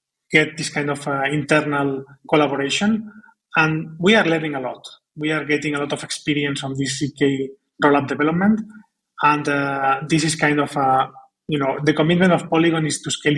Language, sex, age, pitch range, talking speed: English, male, 30-49, 140-160 Hz, 185 wpm